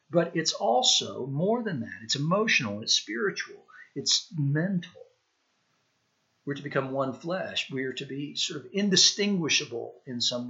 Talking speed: 150 wpm